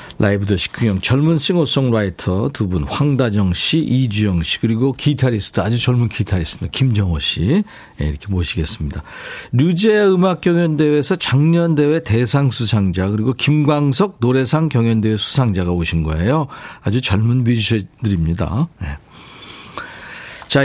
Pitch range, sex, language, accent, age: 105-155 Hz, male, Korean, native, 50-69